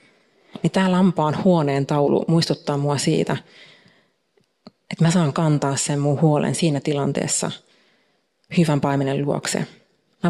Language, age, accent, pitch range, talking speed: Finnish, 30-49, native, 145-175 Hz, 120 wpm